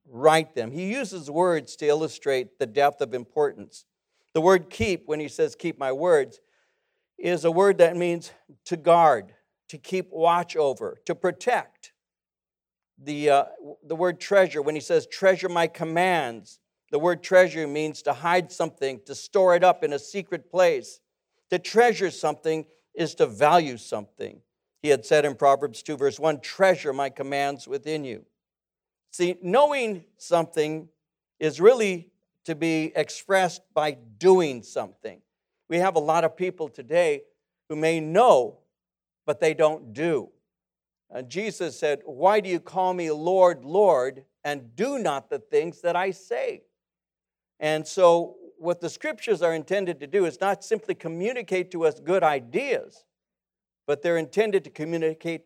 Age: 60-79